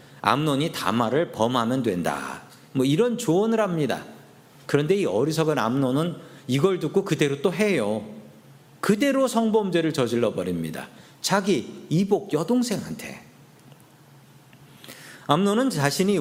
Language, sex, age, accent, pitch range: Korean, male, 40-59, native, 125-185 Hz